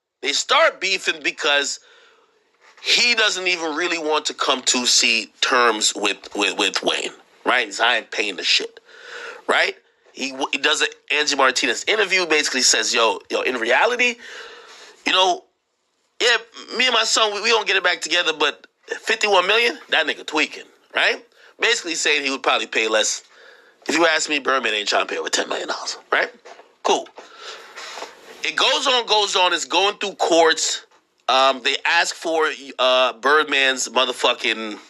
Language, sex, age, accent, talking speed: English, male, 30-49, American, 165 wpm